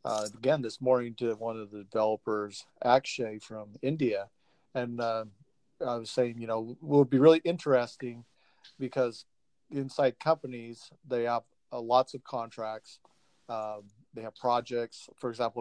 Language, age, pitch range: English, 40-59, 115-130 Hz